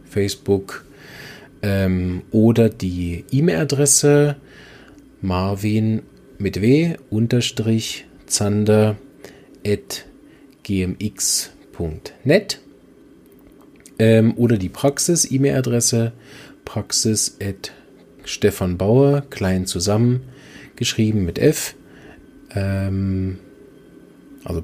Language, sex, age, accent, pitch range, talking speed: German, male, 40-59, German, 100-130 Hz, 60 wpm